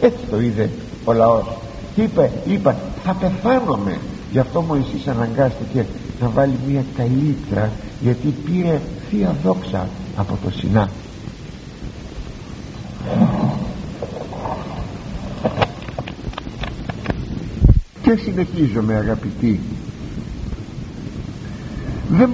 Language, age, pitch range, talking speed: Greek, 60-79, 100-155 Hz, 80 wpm